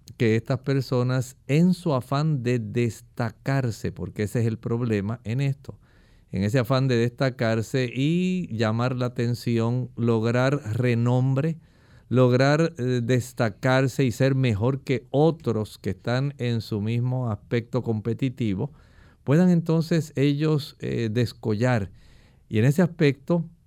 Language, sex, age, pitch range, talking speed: English, male, 50-69, 115-145 Hz, 125 wpm